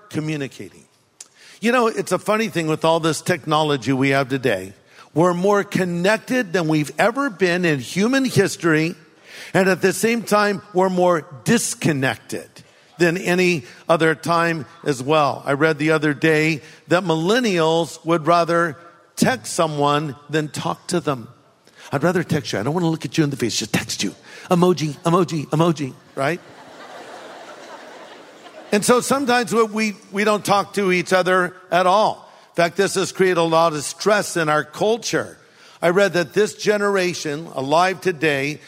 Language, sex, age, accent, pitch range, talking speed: English, male, 50-69, American, 155-205 Hz, 165 wpm